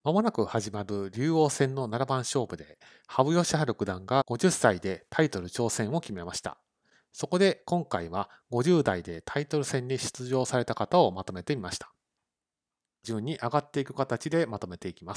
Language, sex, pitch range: Japanese, male, 105-145 Hz